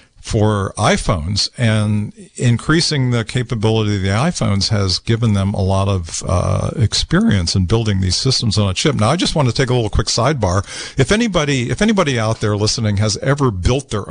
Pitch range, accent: 100-130 Hz, American